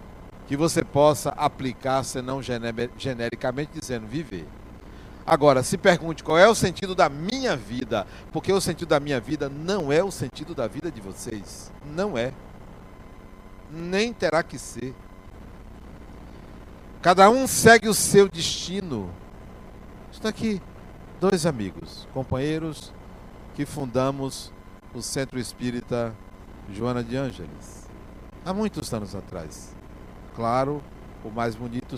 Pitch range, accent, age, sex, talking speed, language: 110-165 Hz, Brazilian, 60-79, male, 125 wpm, Portuguese